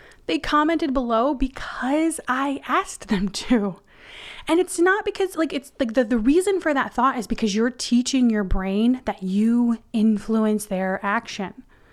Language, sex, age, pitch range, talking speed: English, female, 20-39, 210-255 Hz, 160 wpm